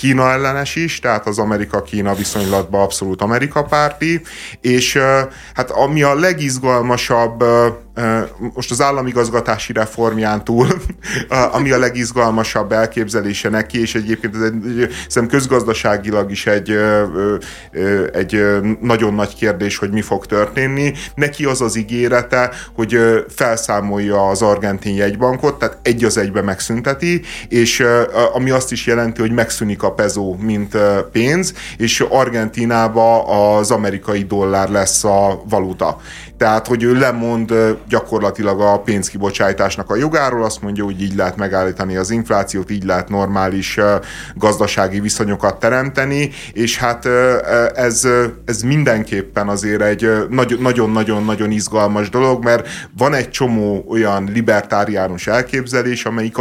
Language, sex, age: Hungarian, male, 30-49